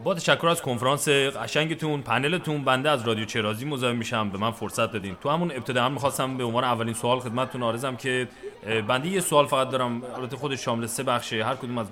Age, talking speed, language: 30-49, 205 wpm, English